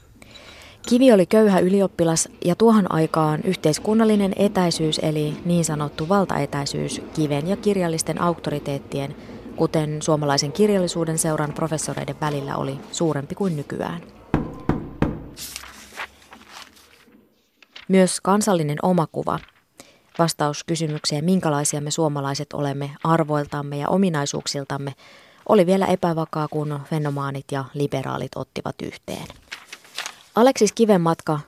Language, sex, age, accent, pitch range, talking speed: Finnish, female, 20-39, native, 145-180 Hz, 95 wpm